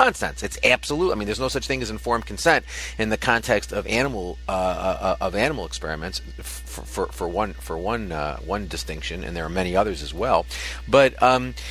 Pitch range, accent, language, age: 105-150 Hz, American, English, 40-59